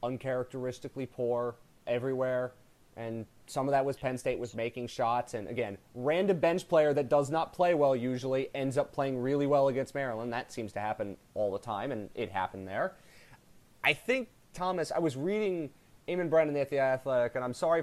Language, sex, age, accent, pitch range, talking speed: English, male, 30-49, American, 120-165 Hz, 190 wpm